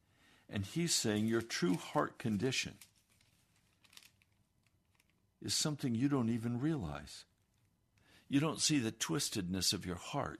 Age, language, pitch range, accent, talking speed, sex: 60-79, English, 100-150 Hz, American, 120 wpm, male